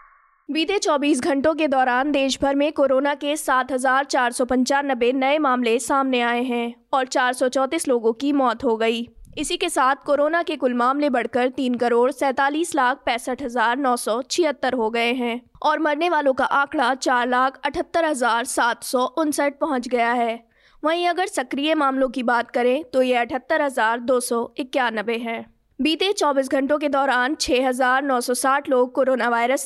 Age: 20-39